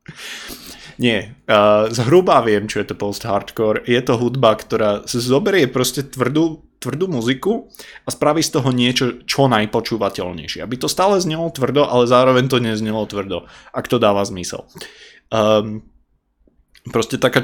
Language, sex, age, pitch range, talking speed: Slovak, male, 20-39, 115-140 Hz, 140 wpm